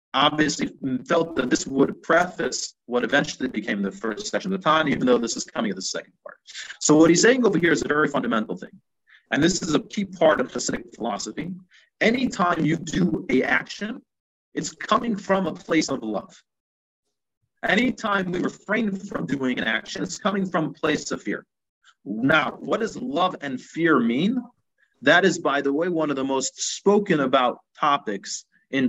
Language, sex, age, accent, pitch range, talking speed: English, male, 40-59, American, 130-185 Hz, 185 wpm